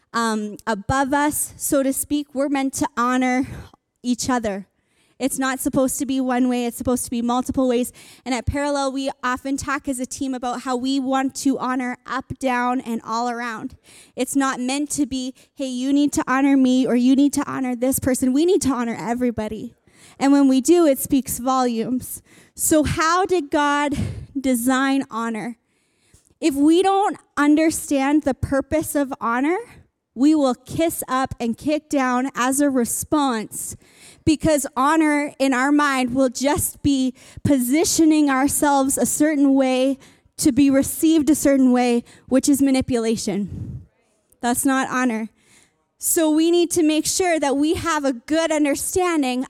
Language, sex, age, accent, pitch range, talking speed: English, female, 20-39, American, 250-290 Hz, 165 wpm